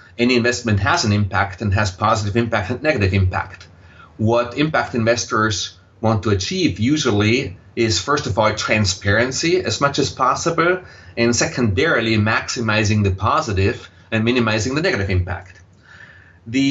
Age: 30-49